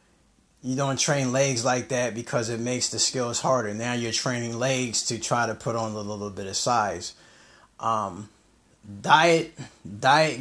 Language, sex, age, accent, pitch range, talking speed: English, male, 20-39, American, 110-135 Hz, 165 wpm